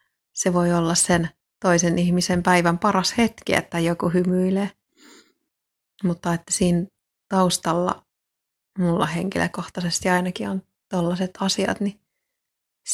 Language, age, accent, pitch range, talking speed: Finnish, 30-49, native, 175-195 Hz, 105 wpm